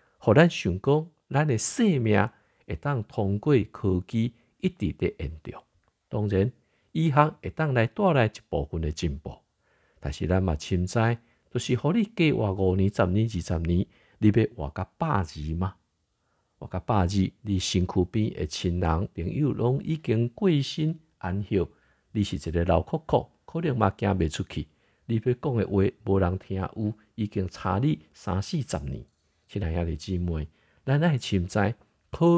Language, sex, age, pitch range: Chinese, male, 50-69, 90-130 Hz